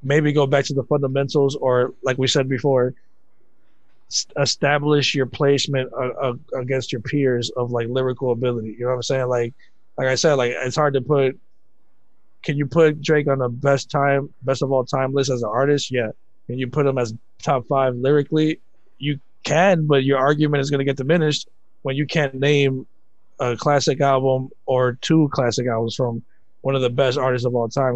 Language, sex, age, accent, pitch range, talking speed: English, male, 20-39, American, 125-150 Hz, 200 wpm